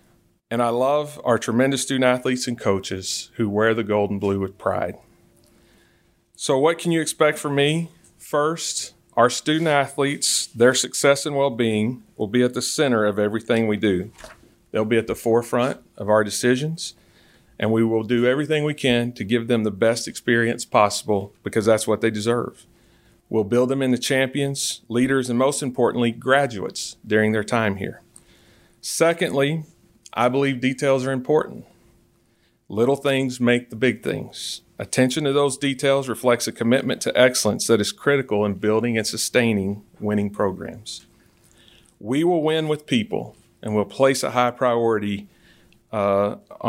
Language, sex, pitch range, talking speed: English, male, 110-135 Hz, 160 wpm